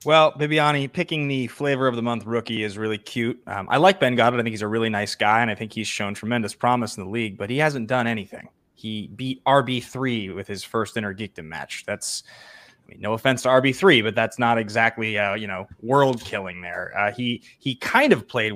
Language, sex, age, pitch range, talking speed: English, male, 20-39, 115-185 Hz, 225 wpm